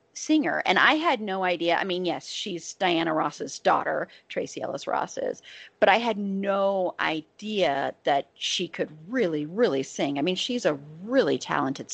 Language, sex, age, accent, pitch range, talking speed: English, female, 30-49, American, 160-200 Hz, 170 wpm